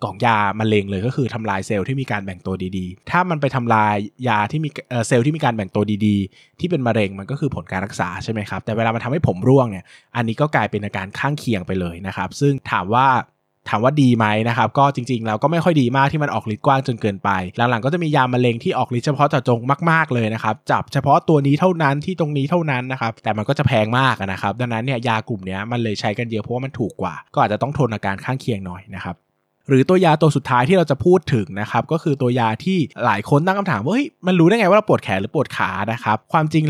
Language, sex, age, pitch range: Thai, male, 20-39, 105-145 Hz